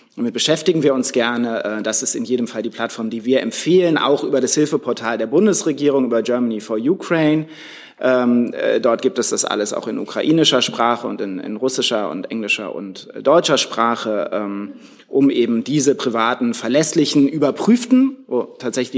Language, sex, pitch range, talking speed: German, male, 115-145 Hz, 160 wpm